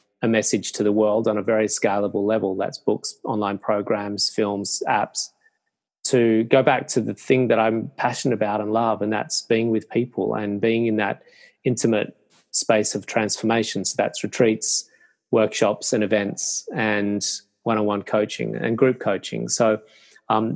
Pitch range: 105-120 Hz